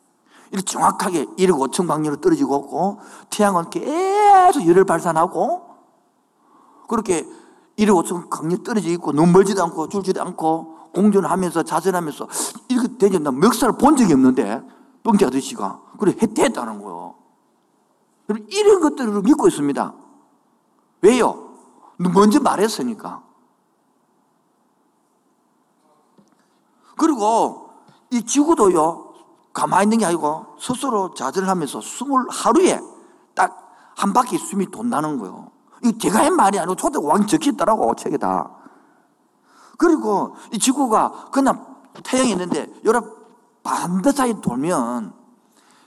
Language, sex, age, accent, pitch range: Korean, male, 50-69, native, 190-280 Hz